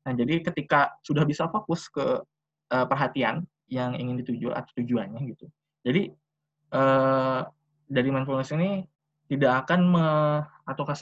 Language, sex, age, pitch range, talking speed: Indonesian, male, 20-39, 130-150 Hz, 130 wpm